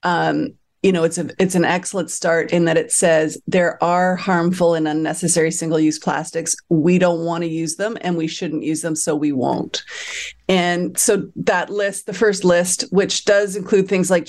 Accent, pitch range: American, 160-200 Hz